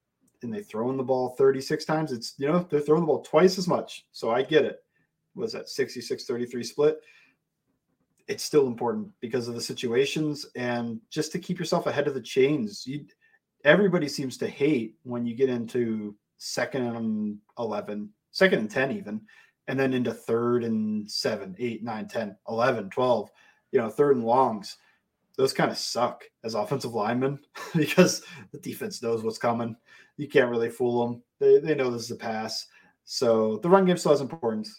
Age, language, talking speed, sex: 30-49, English, 185 wpm, male